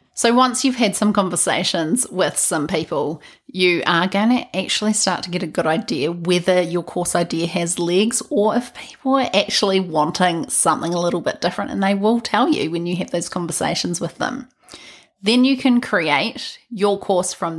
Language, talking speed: English, 190 wpm